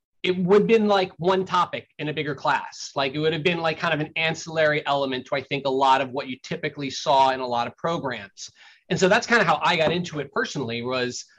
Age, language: 30-49, English